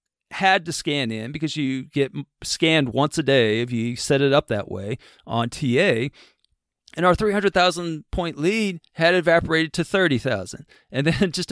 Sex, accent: male, American